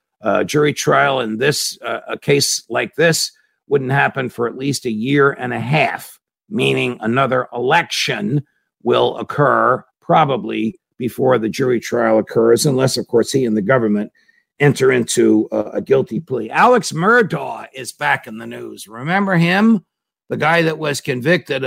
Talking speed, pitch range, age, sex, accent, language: 165 wpm, 115-145 Hz, 50-69, male, American, English